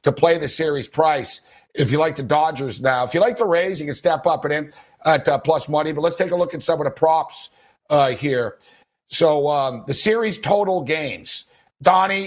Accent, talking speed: American, 220 wpm